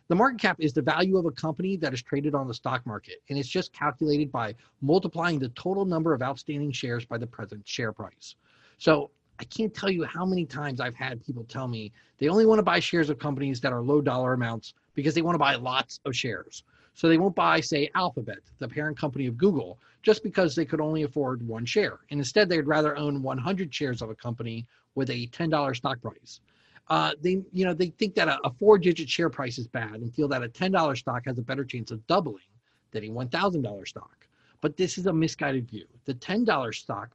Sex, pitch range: male, 125-175 Hz